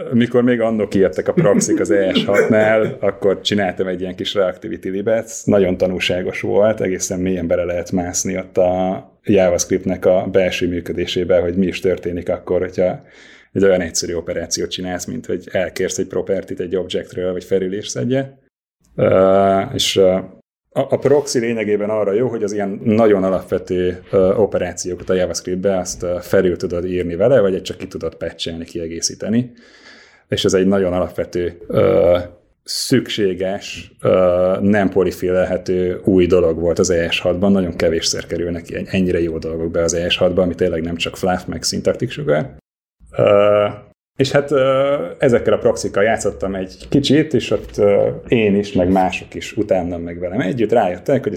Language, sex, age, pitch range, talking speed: Hungarian, male, 30-49, 90-110 Hz, 150 wpm